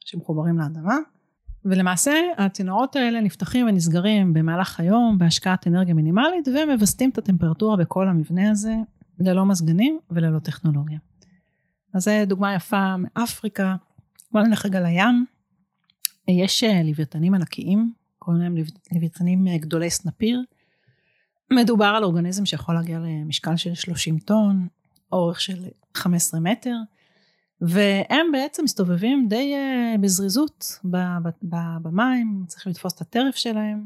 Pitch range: 170-230 Hz